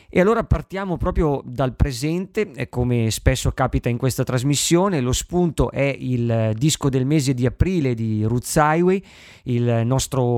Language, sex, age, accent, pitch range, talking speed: Italian, male, 20-39, native, 125-155 Hz, 150 wpm